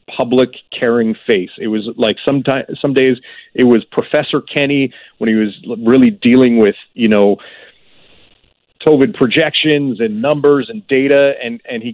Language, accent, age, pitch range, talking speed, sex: English, American, 40-59, 115-145 Hz, 150 wpm, male